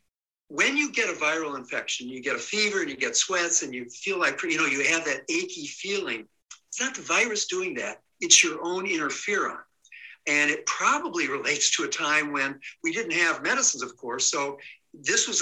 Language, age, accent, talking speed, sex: English, 60-79, American, 200 wpm, male